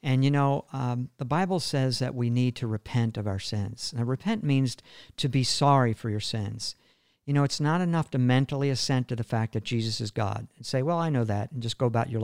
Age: 50-69